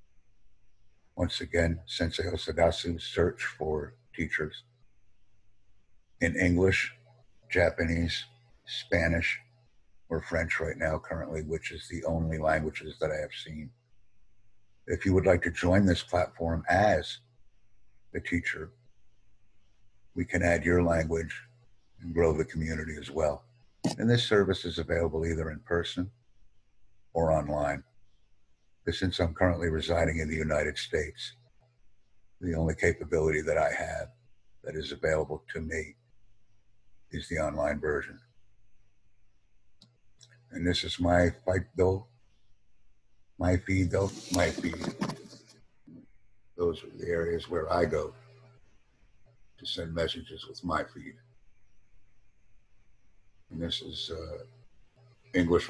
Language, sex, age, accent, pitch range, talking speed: English, male, 60-79, American, 85-100 Hz, 120 wpm